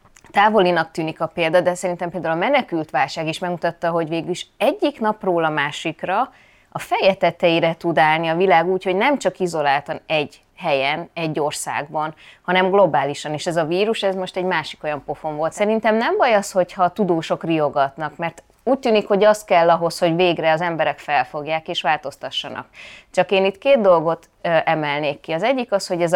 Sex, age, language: female, 20-39, Hungarian